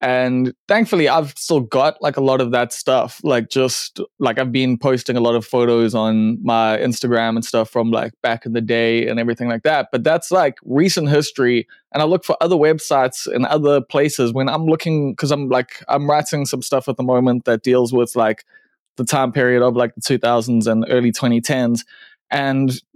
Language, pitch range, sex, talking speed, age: English, 125-150 Hz, male, 205 wpm, 20-39